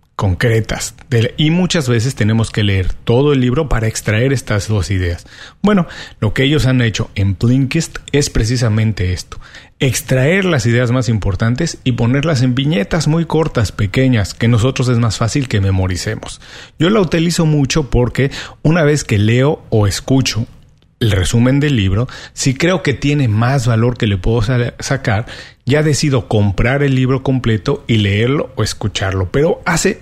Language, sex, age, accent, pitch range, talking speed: Spanish, male, 40-59, Mexican, 105-140 Hz, 165 wpm